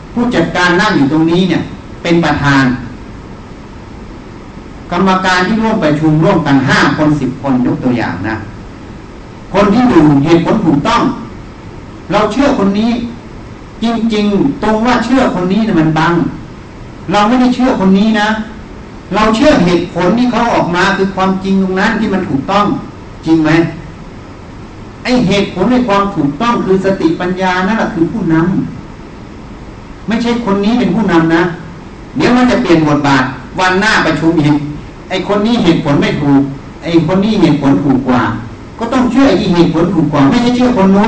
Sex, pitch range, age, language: male, 140-205 Hz, 60-79, Thai